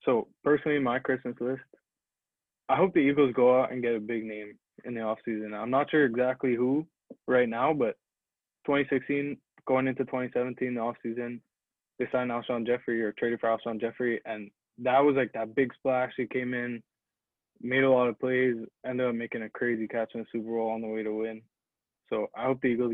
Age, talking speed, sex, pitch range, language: 20-39, 200 wpm, male, 115-130 Hz, English